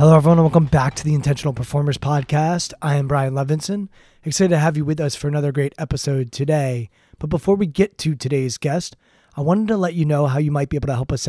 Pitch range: 140-170 Hz